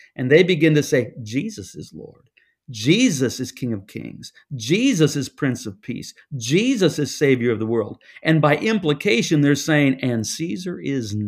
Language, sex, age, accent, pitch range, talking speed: English, male, 50-69, American, 125-160 Hz, 170 wpm